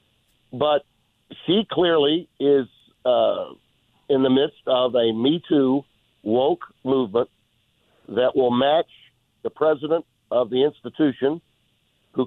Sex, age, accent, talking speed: male, 50-69, American, 110 wpm